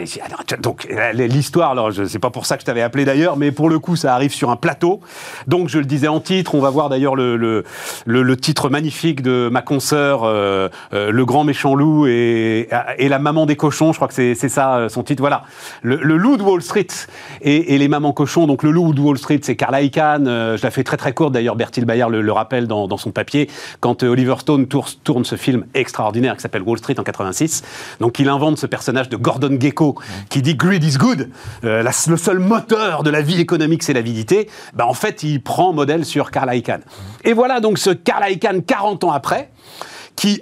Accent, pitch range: French, 125-175 Hz